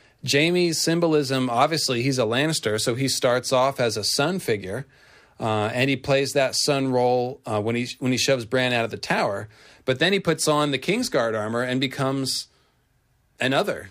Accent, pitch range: American, 110-135 Hz